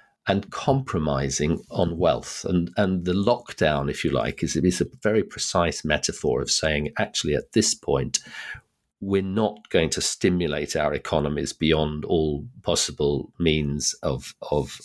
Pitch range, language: 75-95 Hz, English